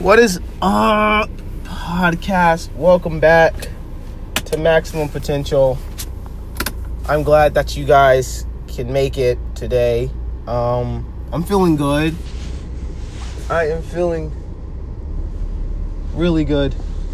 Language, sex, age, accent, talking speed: English, male, 20-39, American, 95 wpm